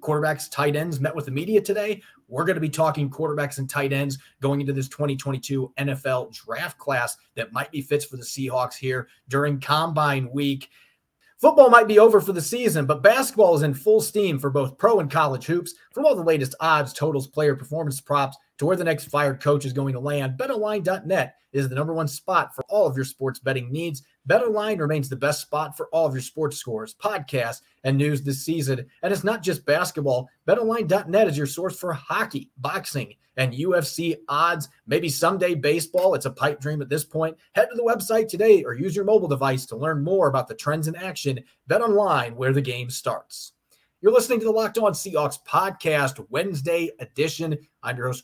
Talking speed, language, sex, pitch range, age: 205 wpm, English, male, 135-175 Hz, 30-49